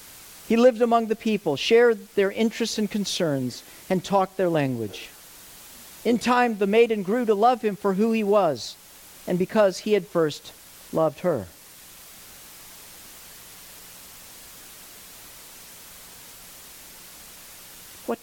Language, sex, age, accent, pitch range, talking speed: English, male, 50-69, American, 130-215 Hz, 110 wpm